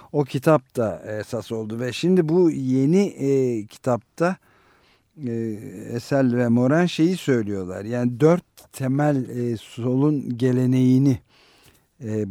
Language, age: Turkish, 50-69